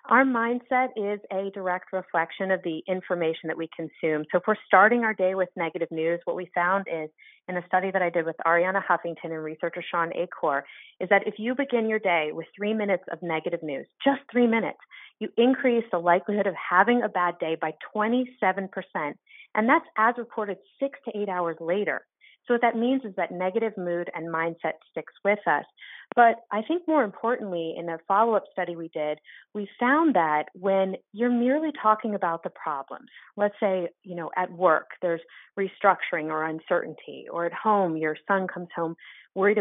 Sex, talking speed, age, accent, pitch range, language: female, 190 wpm, 30-49, American, 170-220 Hz, English